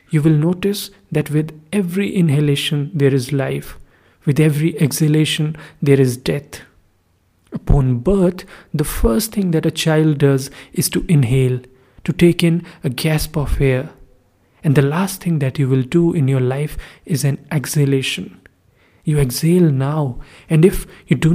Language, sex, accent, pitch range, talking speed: English, male, Indian, 140-175 Hz, 155 wpm